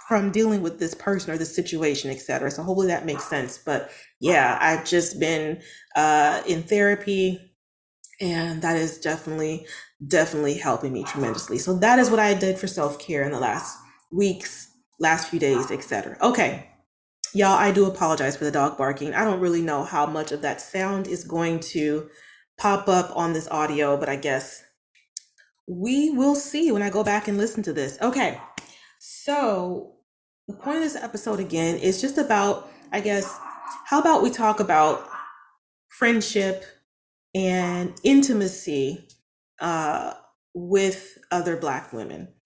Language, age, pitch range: English, 20-39, 165-205 Hz